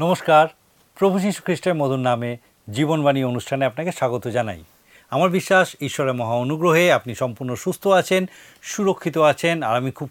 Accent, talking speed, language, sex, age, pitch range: native, 140 wpm, Bengali, male, 50-69, 135-195 Hz